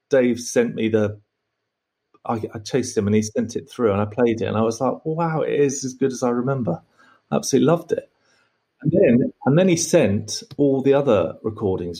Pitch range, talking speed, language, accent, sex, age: 105-130 Hz, 215 wpm, English, British, male, 30-49